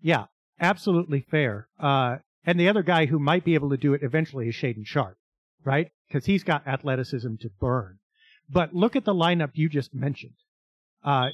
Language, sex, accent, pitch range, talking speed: English, male, American, 135-175 Hz, 185 wpm